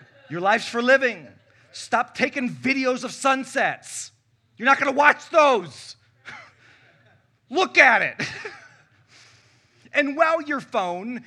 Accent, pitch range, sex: American, 130-215 Hz, male